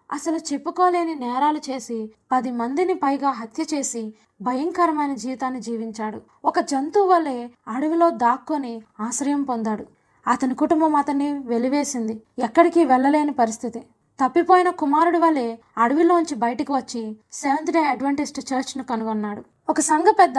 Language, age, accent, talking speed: Telugu, 20-39, native, 120 wpm